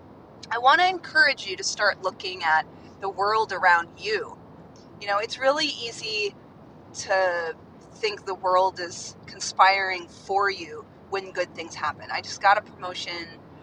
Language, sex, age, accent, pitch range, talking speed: English, female, 30-49, American, 185-265 Hz, 155 wpm